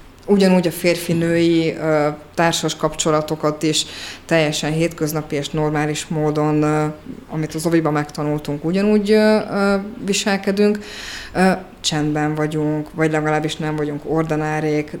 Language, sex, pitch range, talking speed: Hungarian, female, 155-190 Hz, 95 wpm